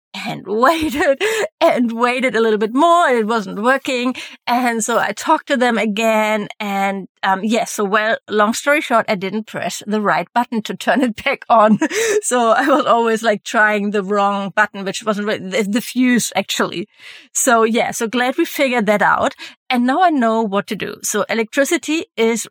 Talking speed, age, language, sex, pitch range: 190 wpm, 30-49, English, female, 205-260 Hz